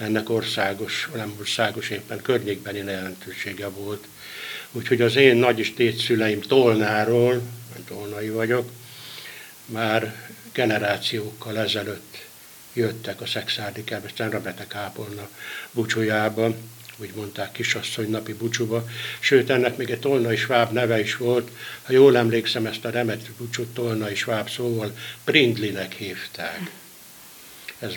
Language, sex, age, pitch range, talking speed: Hungarian, male, 60-79, 105-120 Hz, 110 wpm